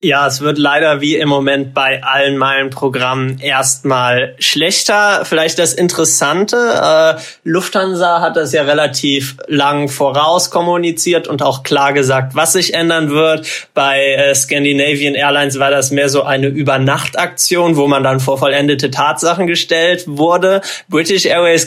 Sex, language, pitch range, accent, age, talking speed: male, German, 140-160 Hz, German, 20-39, 145 wpm